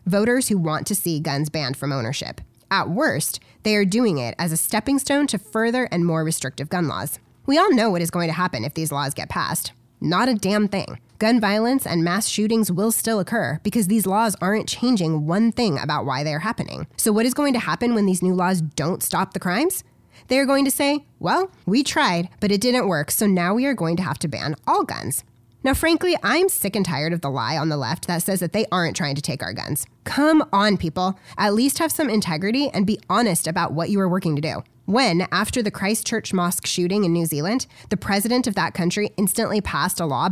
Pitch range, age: 160-225 Hz, 20-39